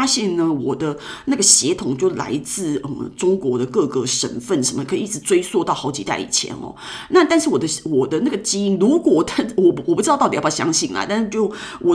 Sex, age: female, 30-49